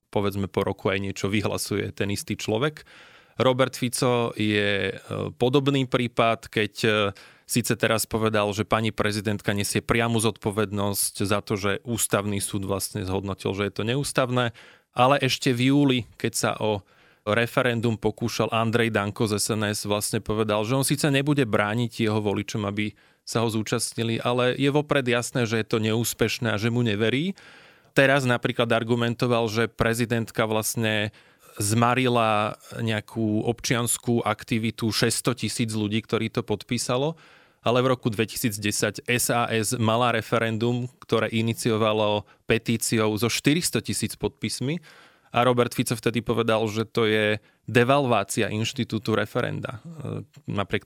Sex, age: male, 20-39